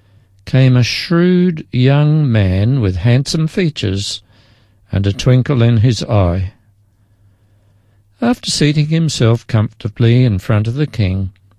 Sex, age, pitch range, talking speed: male, 60-79, 100-150 Hz, 120 wpm